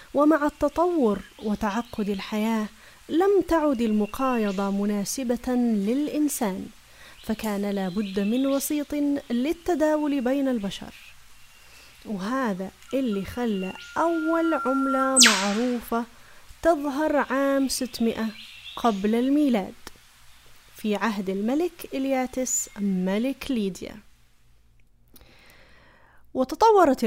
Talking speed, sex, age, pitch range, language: 80 wpm, female, 30-49, 205-275 Hz, Arabic